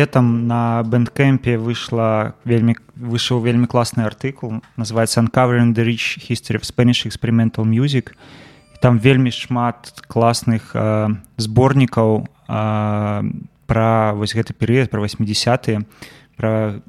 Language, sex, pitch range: English, male, 110-125 Hz